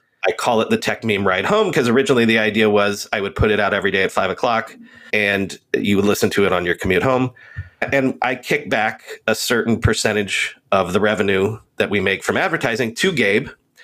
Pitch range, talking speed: 110-140 Hz, 215 wpm